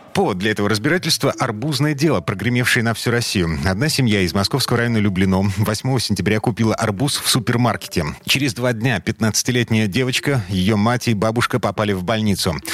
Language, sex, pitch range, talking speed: Russian, male, 100-120 Hz, 165 wpm